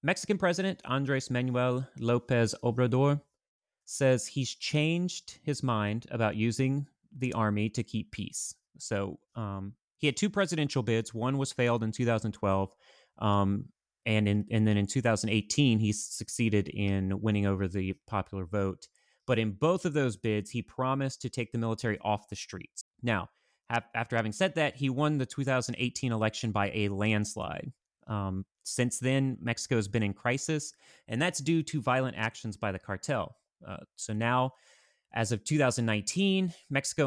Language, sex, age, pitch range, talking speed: English, male, 30-49, 105-135 Hz, 155 wpm